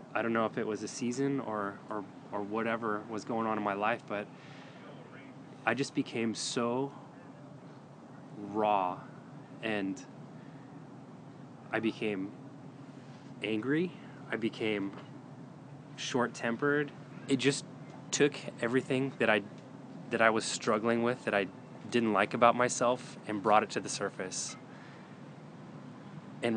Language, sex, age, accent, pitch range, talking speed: English, male, 20-39, American, 105-130 Hz, 125 wpm